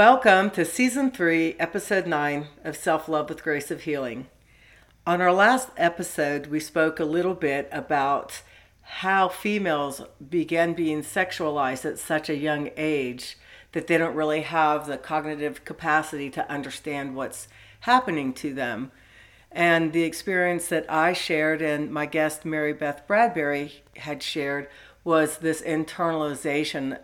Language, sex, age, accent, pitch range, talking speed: English, female, 60-79, American, 145-175 Hz, 140 wpm